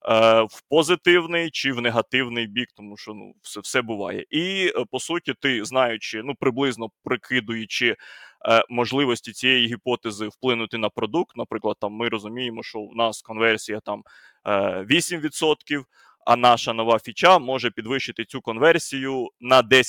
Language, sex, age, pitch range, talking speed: Ukrainian, male, 20-39, 115-140 Hz, 135 wpm